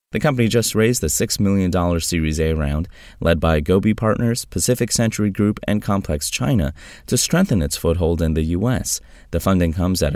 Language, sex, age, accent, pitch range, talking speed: English, male, 30-49, American, 80-110 Hz, 185 wpm